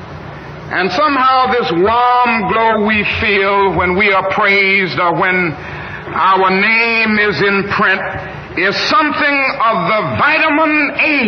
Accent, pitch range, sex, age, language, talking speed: American, 180-220 Hz, male, 60-79, English, 130 wpm